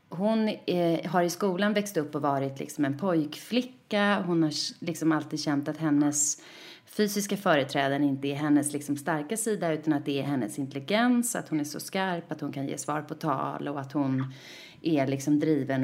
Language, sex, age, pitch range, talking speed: English, female, 30-49, 140-180 Hz, 175 wpm